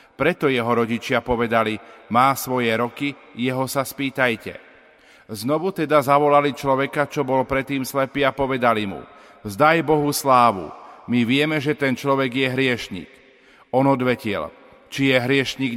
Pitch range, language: 120-140 Hz, Slovak